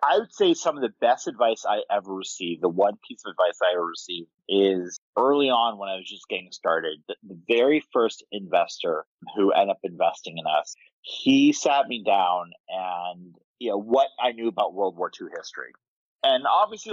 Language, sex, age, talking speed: English, male, 30-49, 200 wpm